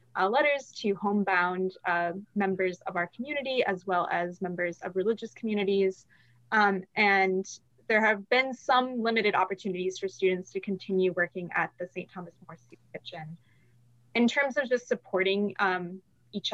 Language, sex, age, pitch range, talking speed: English, female, 20-39, 180-210 Hz, 150 wpm